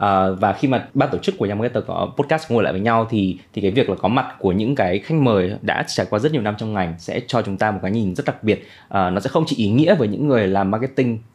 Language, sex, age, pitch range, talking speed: Vietnamese, male, 20-39, 95-115 Hz, 305 wpm